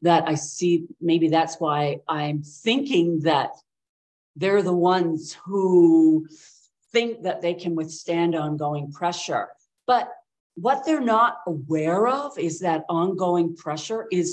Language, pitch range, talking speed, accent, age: English, 160-215 Hz, 130 wpm, American, 50-69